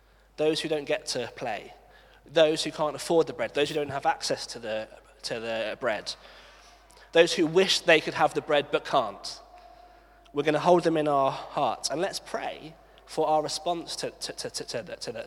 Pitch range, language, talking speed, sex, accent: 130-155 Hz, English, 205 wpm, male, British